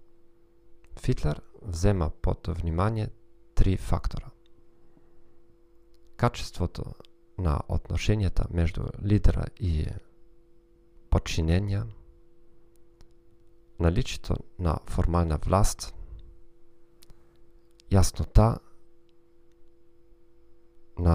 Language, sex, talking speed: Bulgarian, male, 55 wpm